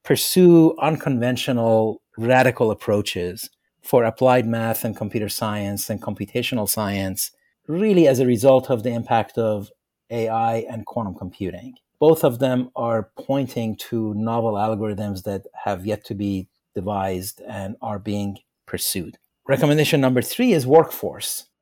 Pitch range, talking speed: 105-130 Hz, 135 wpm